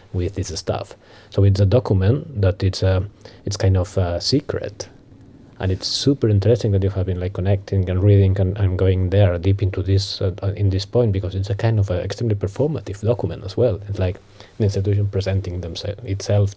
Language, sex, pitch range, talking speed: English, male, 95-105 Hz, 205 wpm